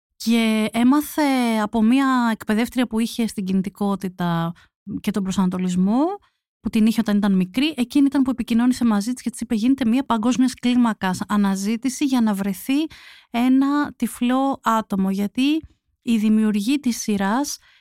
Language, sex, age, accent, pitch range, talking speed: Greek, female, 30-49, native, 195-245 Hz, 140 wpm